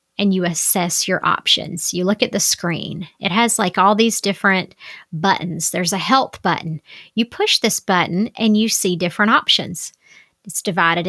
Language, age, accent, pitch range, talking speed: English, 30-49, American, 180-225 Hz, 175 wpm